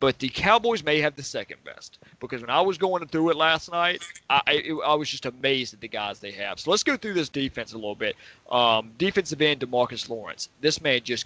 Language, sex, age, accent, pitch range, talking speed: English, male, 30-49, American, 115-150 Hz, 240 wpm